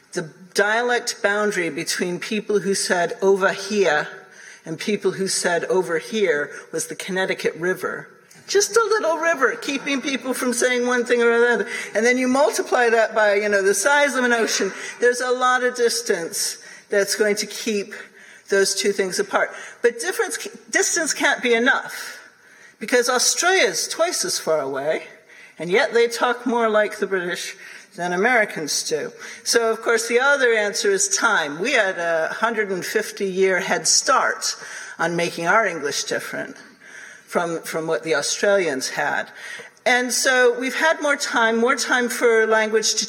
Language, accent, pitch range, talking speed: English, American, 200-250 Hz, 165 wpm